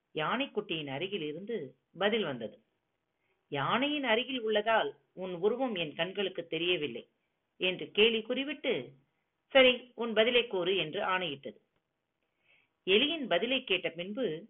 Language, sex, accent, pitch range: Tamil, female, native, 170-245 Hz